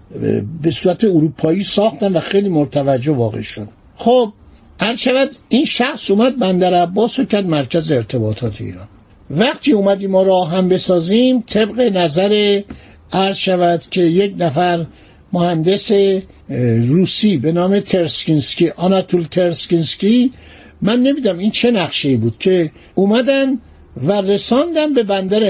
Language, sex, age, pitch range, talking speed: Persian, male, 60-79, 165-220 Hz, 125 wpm